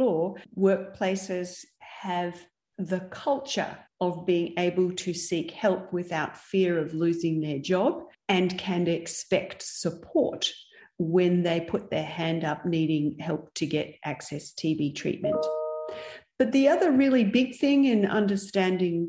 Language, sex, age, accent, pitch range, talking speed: English, female, 40-59, Australian, 170-210 Hz, 130 wpm